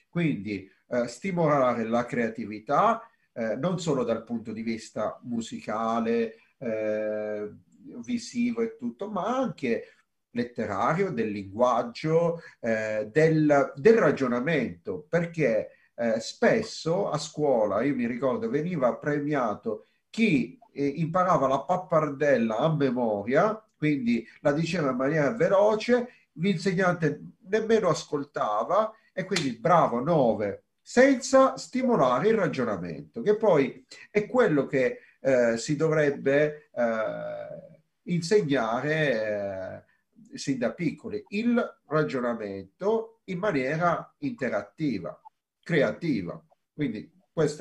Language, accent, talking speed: Italian, native, 105 wpm